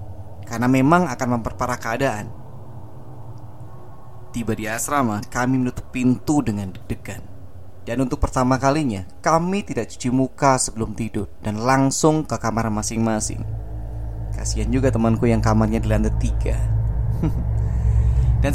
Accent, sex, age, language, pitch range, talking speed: native, male, 20-39, Indonesian, 100-125 Hz, 120 wpm